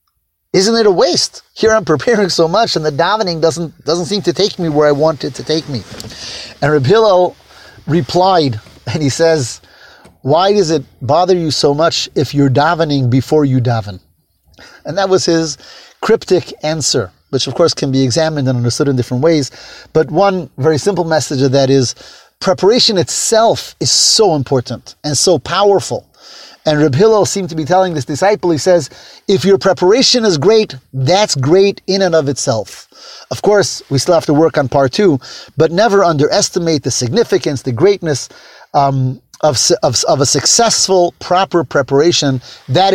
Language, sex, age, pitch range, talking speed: English, male, 30-49, 130-185 Hz, 175 wpm